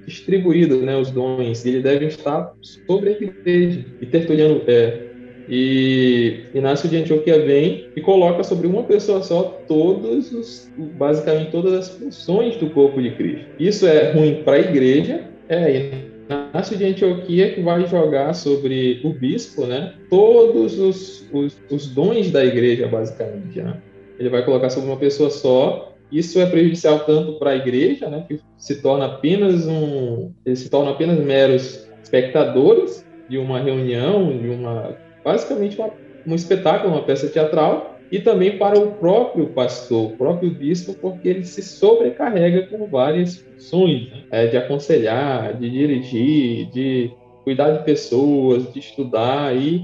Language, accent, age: Portuguese, Brazilian, 20-39